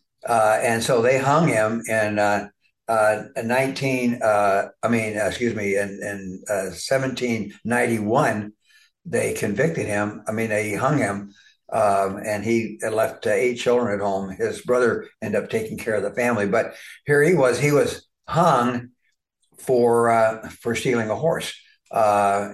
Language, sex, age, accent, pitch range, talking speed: English, male, 60-79, American, 100-130 Hz, 160 wpm